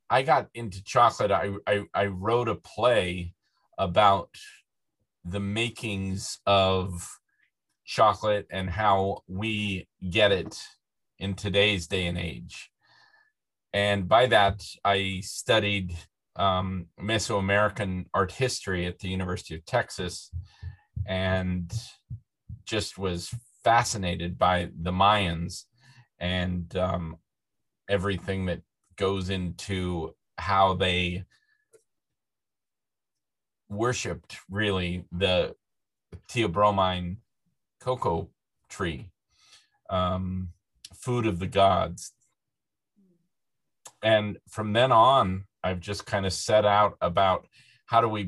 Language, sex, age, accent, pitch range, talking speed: English, male, 30-49, American, 90-110 Hz, 100 wpm